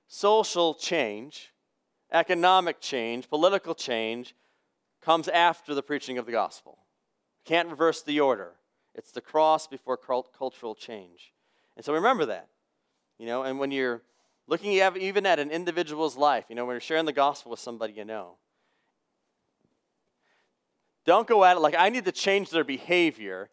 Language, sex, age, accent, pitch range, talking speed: English, male, 40-59, American, 125-165 Hz, 155 wpm